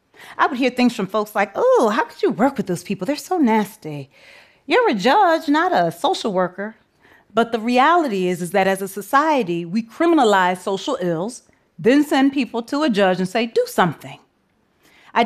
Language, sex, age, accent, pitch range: Korean, female, 30-49, American, 185-260 Hz